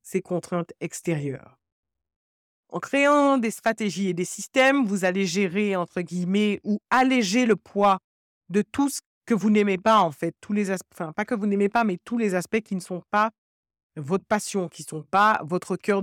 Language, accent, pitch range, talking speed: French, French, 180-215 Hz, 200 wpm